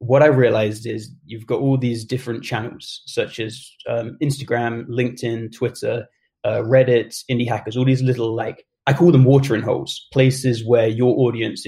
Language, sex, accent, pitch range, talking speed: English, male, British, 115-135 Hz, 170 wpm